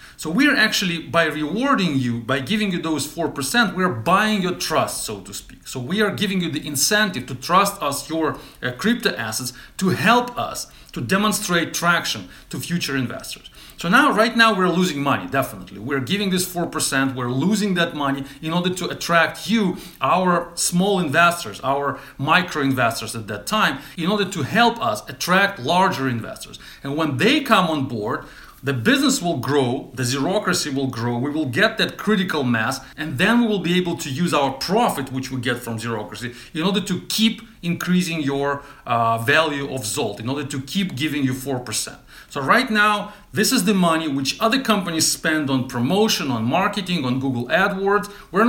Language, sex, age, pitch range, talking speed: English, male, 40-59, 135-195 Hz, 190 wpm